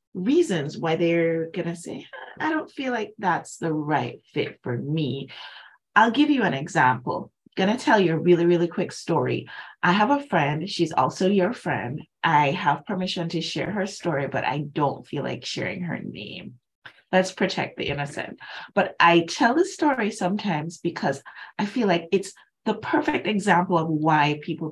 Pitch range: 150-220 Hz